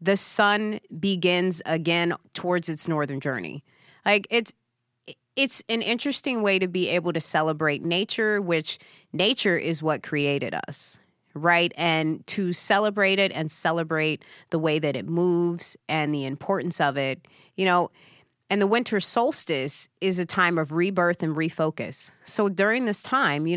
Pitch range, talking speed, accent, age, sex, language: 145-185 Hz, 155 wpm, American, 30-49, female, English